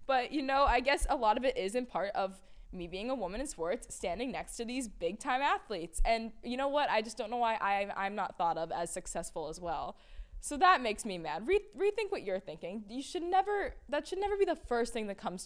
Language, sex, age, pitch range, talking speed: English, female, 10-29, 195-275 Hz, 250 wpm